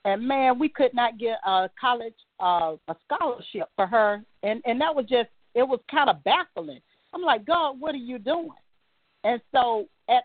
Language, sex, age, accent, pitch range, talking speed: English, female, 40-59, American, 170-230 Hz, 195 wpm